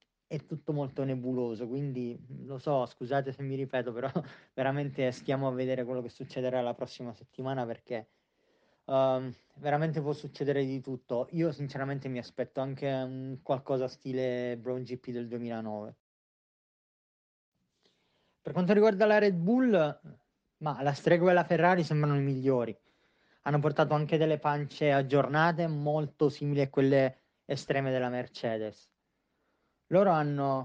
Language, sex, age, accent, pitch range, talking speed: Italian, male, 20-39, native, 125-145 Hz, 140 wpm